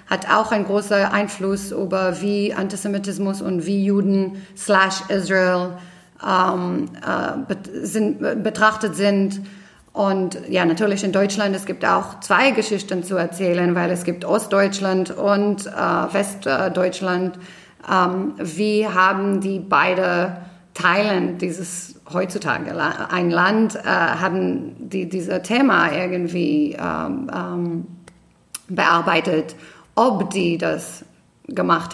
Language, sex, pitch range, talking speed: German, female, 180-215 Hz, 115 wpm